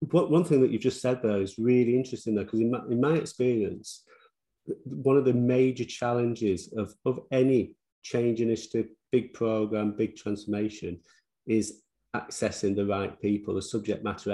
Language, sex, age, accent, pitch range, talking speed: English, male, 40-59, British, 105-120 Hz, 165 wpm